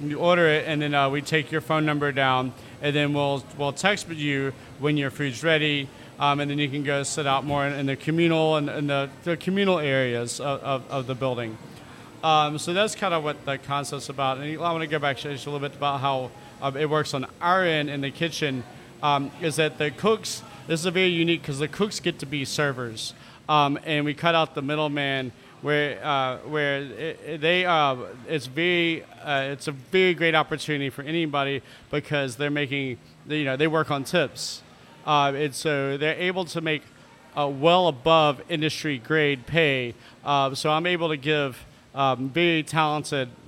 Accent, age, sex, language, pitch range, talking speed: American, 40-59, male, English, 135-155 Hz, 205 wpm